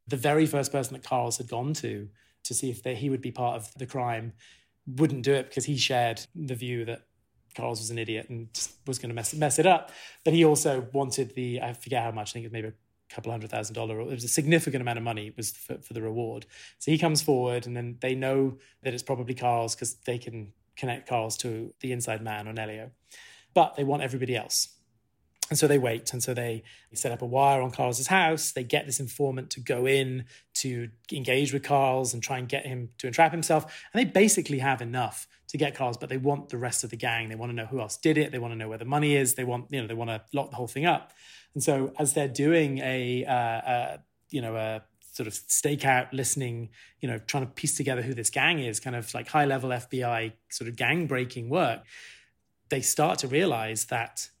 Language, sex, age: English, male, 30-49